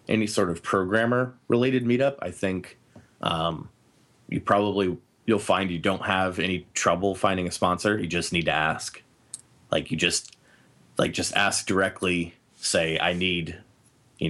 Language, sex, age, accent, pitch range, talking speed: English, male, 30-49, American, 85-110 Hz, 155 wpm